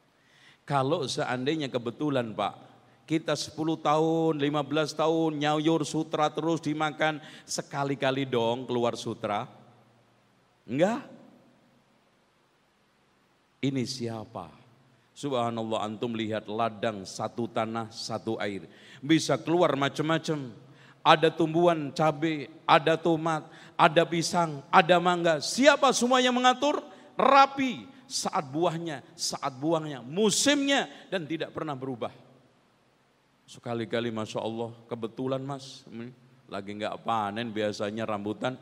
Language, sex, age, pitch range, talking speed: Malay, male, 50-69, 120-170 Hz, 100 wpm